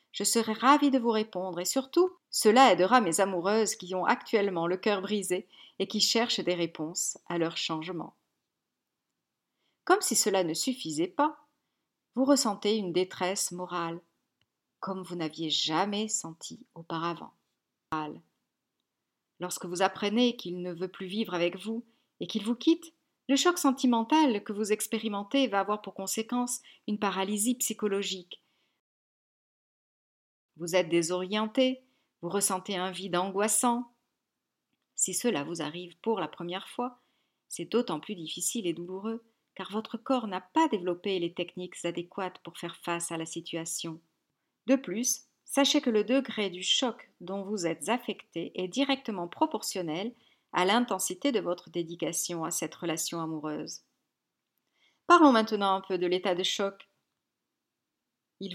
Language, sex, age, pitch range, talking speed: French, female, 40-59, 175-235 Hz, 145 wpm